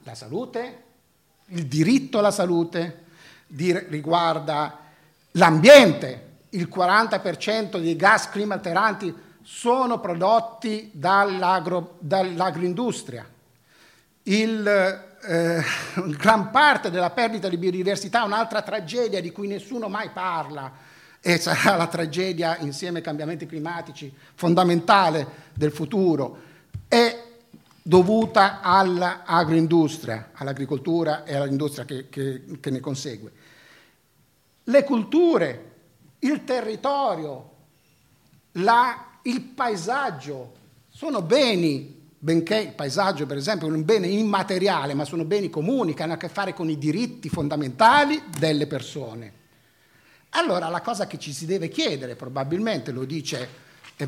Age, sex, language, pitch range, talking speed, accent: 50-69, male, Italian, 145-200 Hz, 110 wpm, native